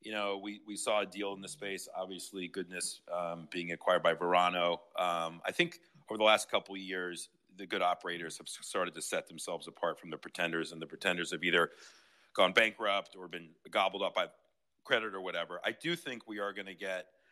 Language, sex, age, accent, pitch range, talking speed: English, male, 40-59, American, 85-105 Hz, 210 wpm